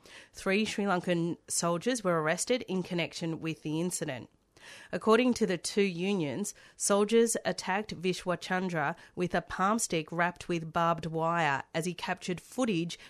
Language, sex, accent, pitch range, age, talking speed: English, female, Australian, 165-190 Hz, 30-49, 140 wpm